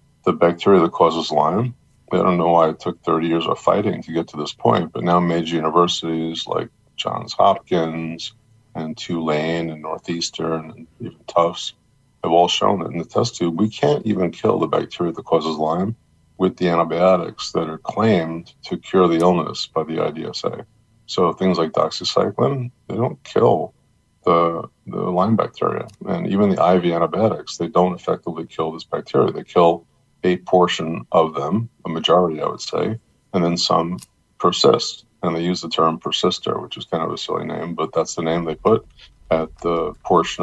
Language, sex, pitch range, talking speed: English, male, 80-90 Hz, 185 wpm